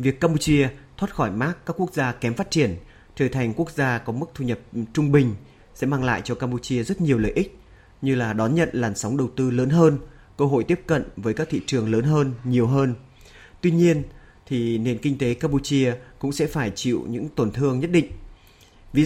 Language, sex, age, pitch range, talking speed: Vietnamese, male, 30-49, 115-145 Hz, 215 wpm